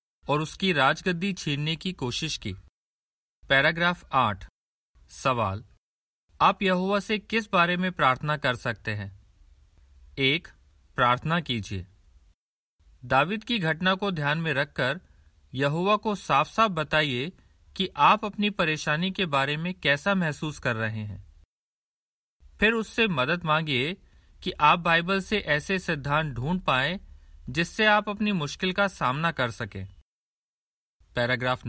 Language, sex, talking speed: Hindi, male, 130 wpm